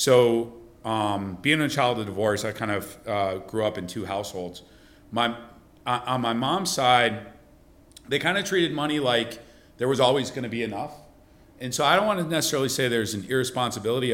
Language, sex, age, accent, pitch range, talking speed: English, male, 40-59, American, 100-120 Hz, 190 wpm